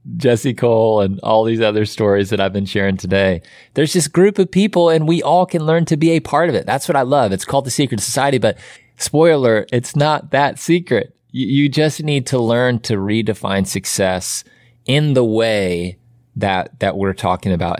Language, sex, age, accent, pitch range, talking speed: English, male, 30-49, American, 100-135 Hz, 205 wpm